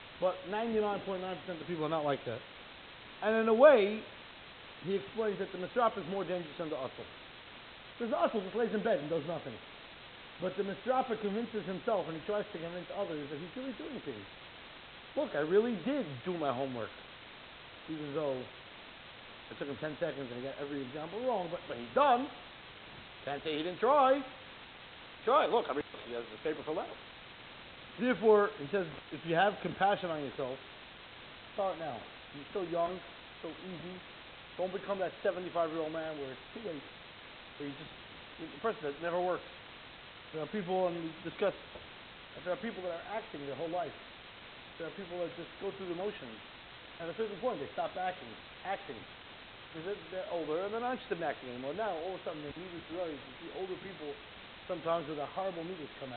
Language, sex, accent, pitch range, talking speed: English, male, American, 155-205 Hz, 195 wpm